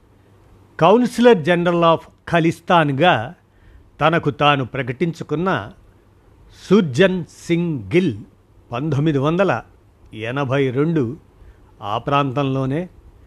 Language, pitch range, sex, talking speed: Telugu, 105-165 Hz, male, 60 wpm